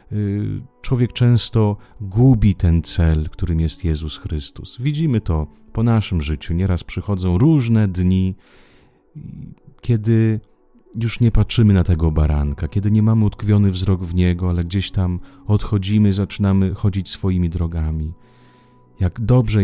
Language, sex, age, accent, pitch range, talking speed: Italian, male, 40-59, Polish, 85-115 Hz, 130 wpm